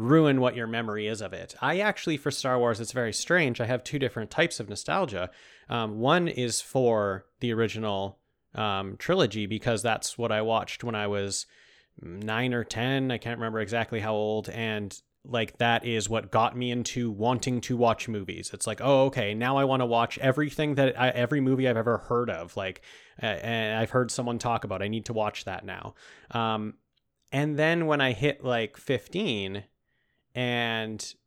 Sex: male